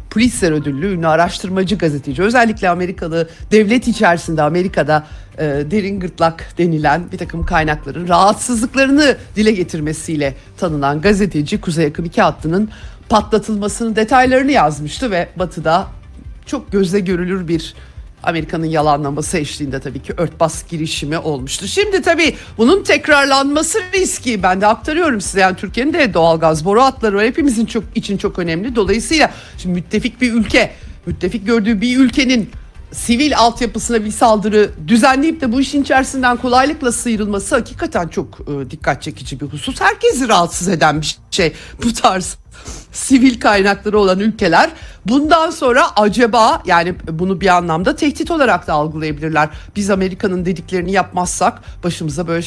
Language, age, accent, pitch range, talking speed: Turkish, 60-79, native, 165-235 Hz, 135 wpm